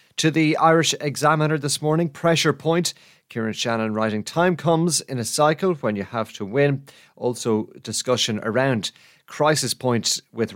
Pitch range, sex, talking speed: 110-145 Hz, male, 155 wpm